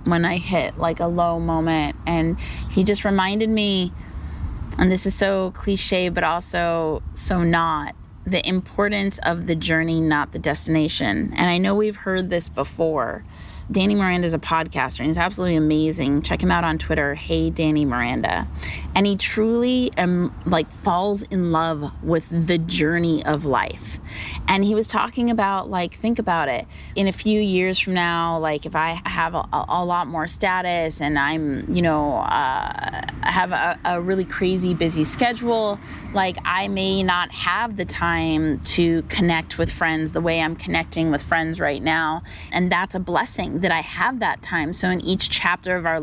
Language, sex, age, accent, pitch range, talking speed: English, female, 20-39, American, 155-185 Hz, 175 wpm